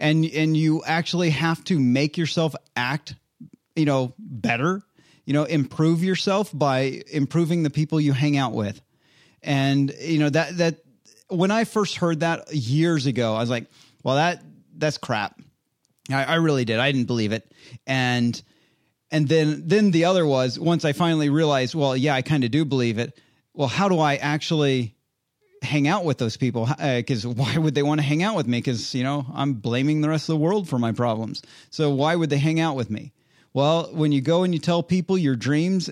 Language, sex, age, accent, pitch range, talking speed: English, male, 30-49, American, 130-165 Hz, 205 wpm